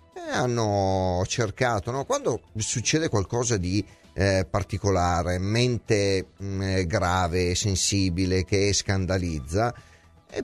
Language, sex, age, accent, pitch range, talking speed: Italian, male, 40-59, native, 95-120 Hz, 90 wpm